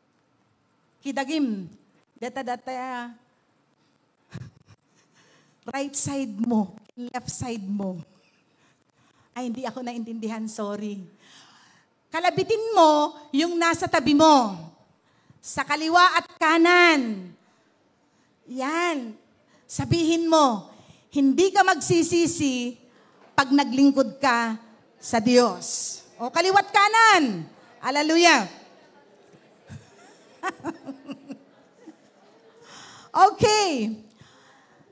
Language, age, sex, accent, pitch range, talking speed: Filipino, 40-59, female, native, 255-385 Hz, 70 wpm